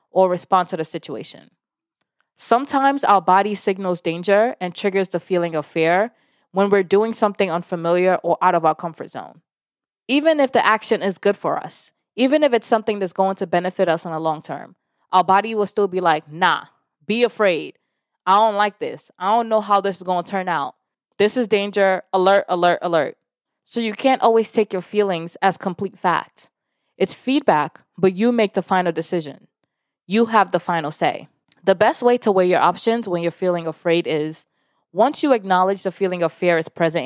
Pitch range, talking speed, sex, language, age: 175-220 Hz, 195 wpm, female, English, 20-39